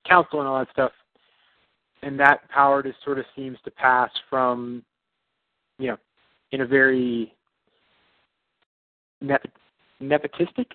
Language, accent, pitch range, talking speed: English, American, 120-140 Hz, 125 wpm